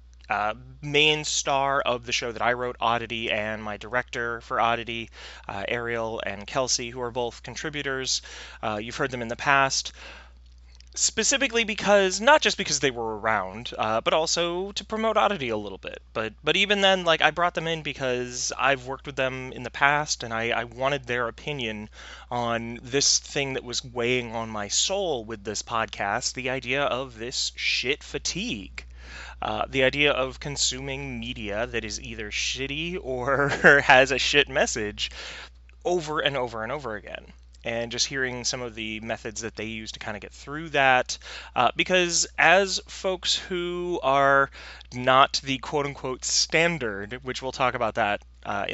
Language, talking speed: English, 175 wpm